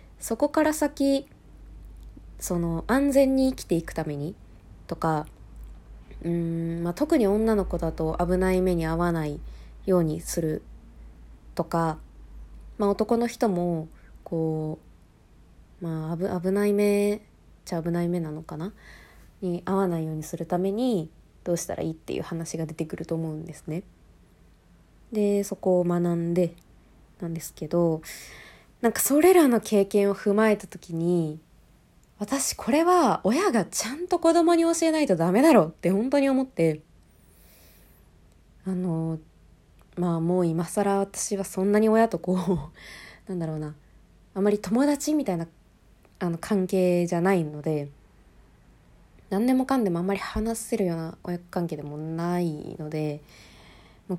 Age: 20-39